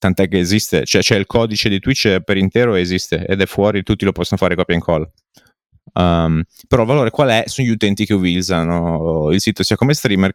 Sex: male